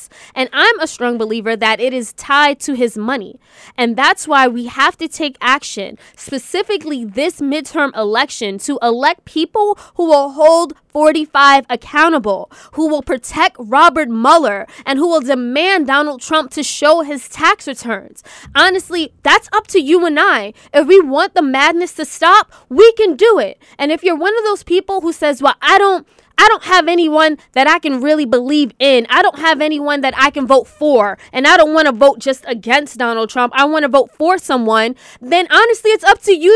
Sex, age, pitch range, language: female, 20-39, 275-360 Hz, English